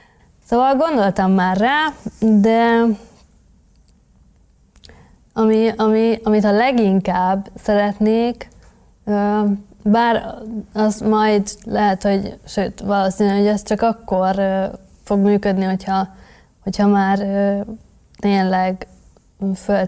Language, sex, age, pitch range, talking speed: Hungarian, female, 20-39, 190-220 Hz, 80 wpm